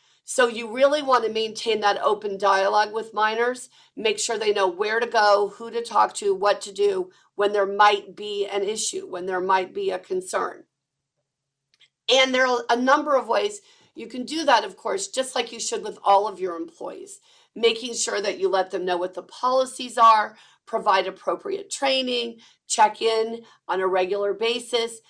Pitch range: 205-275 Hz